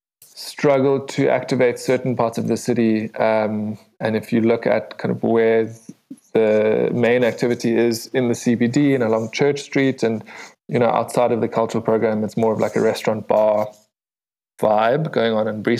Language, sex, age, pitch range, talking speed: English, male, 20-39, 115-125 Hz, 180 wpm